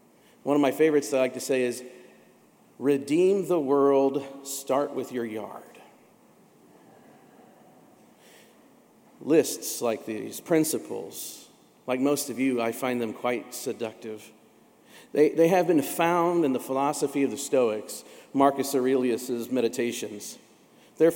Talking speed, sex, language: 130 wpm, male, English